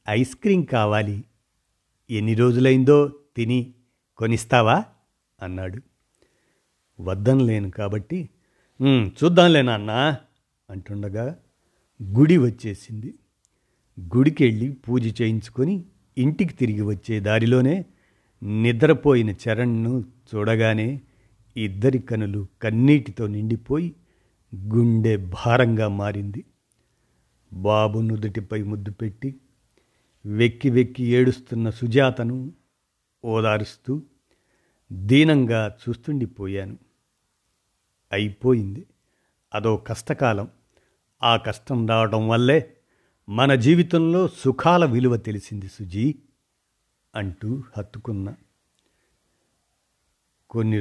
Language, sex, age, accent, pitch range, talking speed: Telugu, male, 50-69, native, 105-130 Hz, 70 wpm